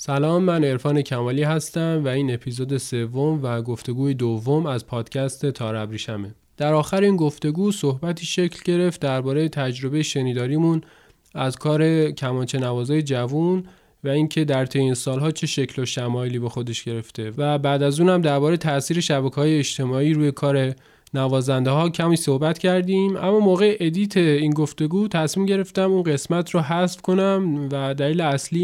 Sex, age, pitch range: male, 20-39, 125-160 Hz